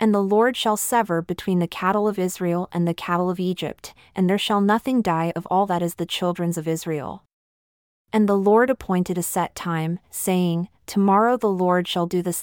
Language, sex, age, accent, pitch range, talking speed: English, female, 30-49, American, 175-205 Hz, 205 wpm